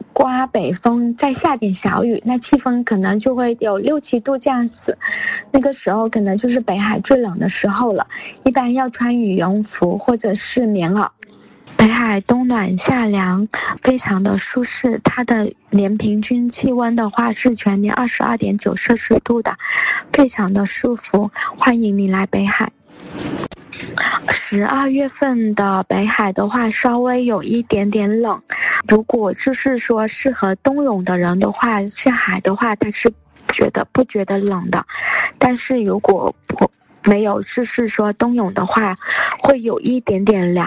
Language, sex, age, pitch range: English, female, 20-39, 205-255 Hz